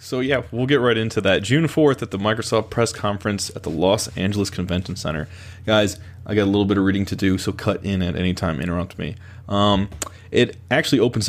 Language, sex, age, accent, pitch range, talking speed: English, male, 20-39, American, 95-110 Hz, 225 wpm